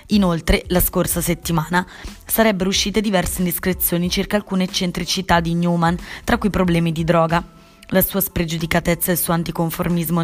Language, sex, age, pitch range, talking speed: Italian, female, 20-39, 170-200 Hz, 145 wpm